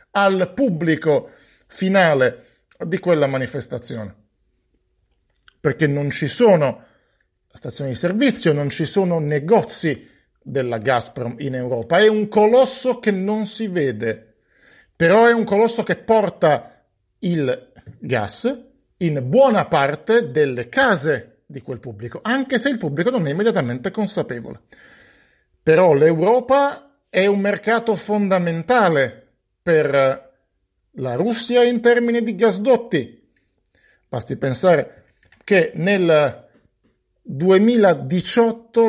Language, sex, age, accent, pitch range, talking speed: Italian, male, 50-69, native, 140-220 Hz, 110 wpm